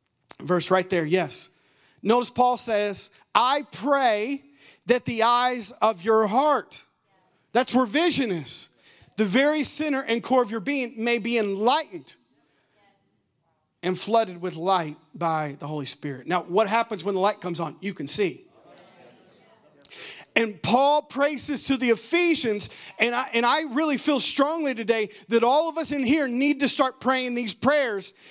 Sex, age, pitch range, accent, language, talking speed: male, 40-59, 215-290 Hz, American, English, 160 wpm